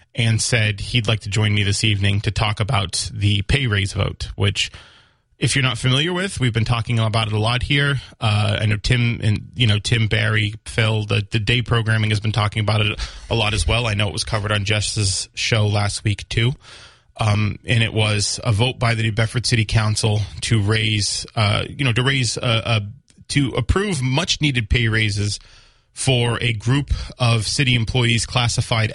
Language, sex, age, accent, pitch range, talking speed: English, male, 20-39, American, 105-120 Hz, 205 wpm